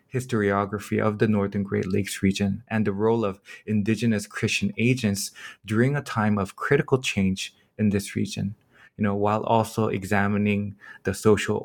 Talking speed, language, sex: 155 wpm, English, male